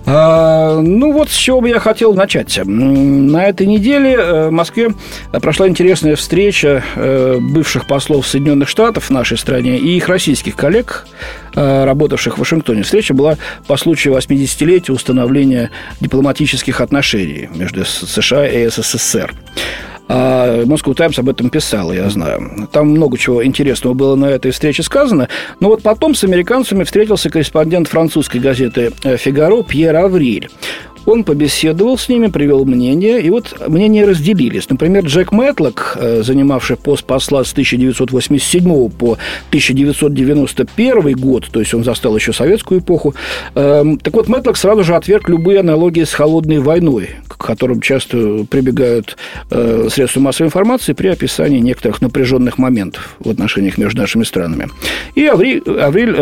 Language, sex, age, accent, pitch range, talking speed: Russian, male, 40-59, native, 130-185 Hz, 140 wpm